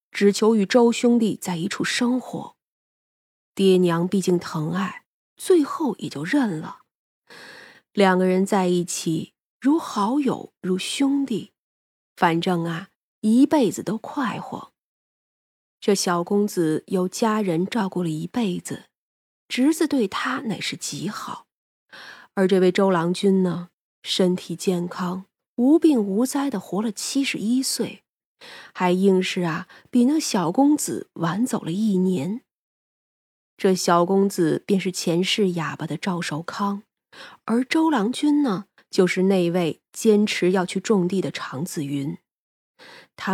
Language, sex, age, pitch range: Chinese, female, 30-49, 175-240 Hz